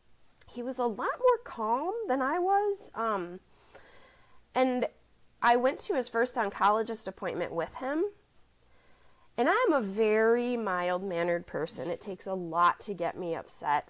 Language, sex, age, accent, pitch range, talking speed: English, female, 30-49, American, 185-255 Hz, 145 wpm